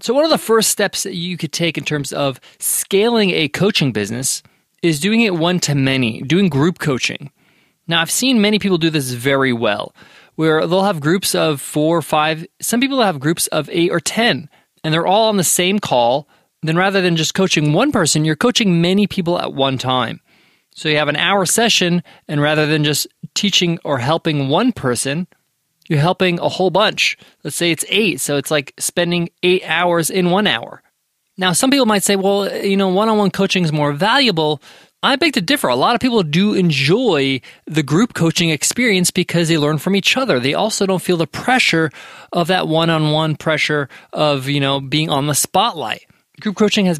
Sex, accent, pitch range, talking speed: male, American, 155-200 Hz, 200 wpm